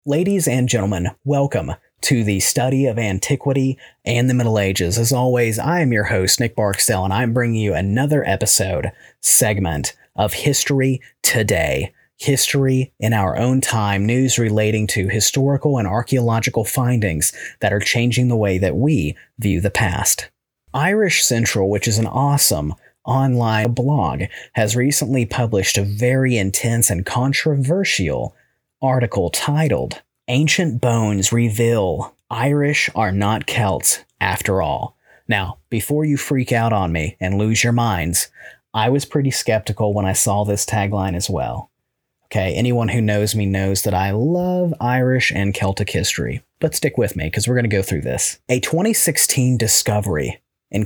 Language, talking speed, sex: English, 155 wpm, male